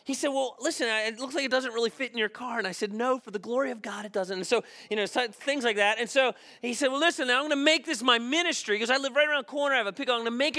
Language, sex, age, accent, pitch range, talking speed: English, male, 30-49, American, 155-245 Hz, 345 wpm